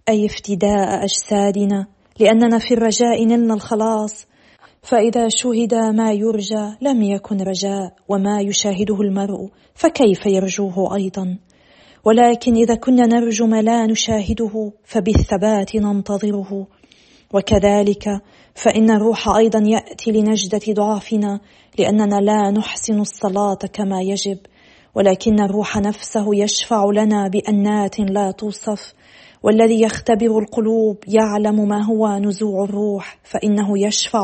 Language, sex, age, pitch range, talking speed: Arabic, female, 40-59, 200-220 Hz, 105 wpm